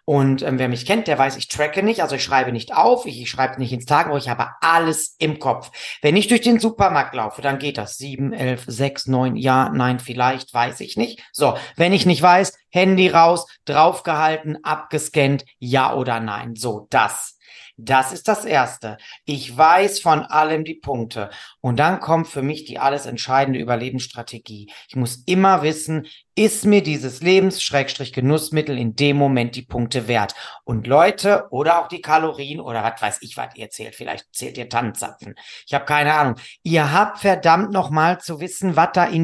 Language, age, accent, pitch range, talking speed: German, 40-59, German, 135-190 Hz, 185 wpm